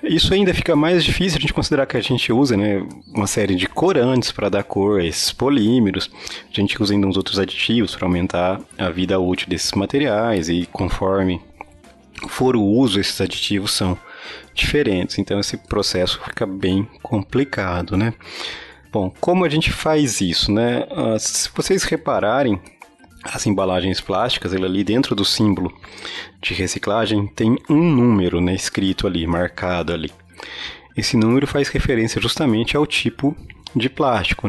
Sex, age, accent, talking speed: male, 30-49, Brazilian, 155 wpm